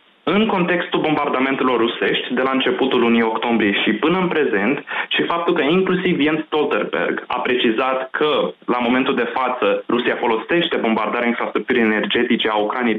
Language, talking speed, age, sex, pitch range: Romanian, 150 wpm, 20-39, male, 110-150 Hz